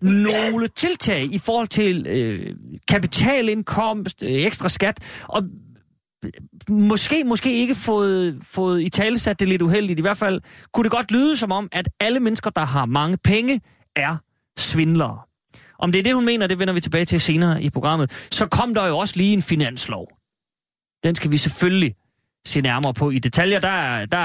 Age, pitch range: 30-49, 150-210 Hz